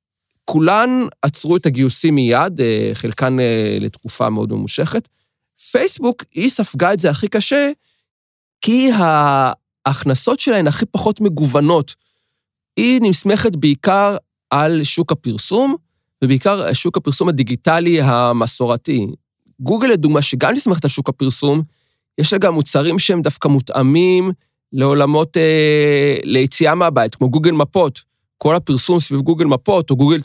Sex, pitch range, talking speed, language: male, 130-180 Hz, 120 wpm, Hebrew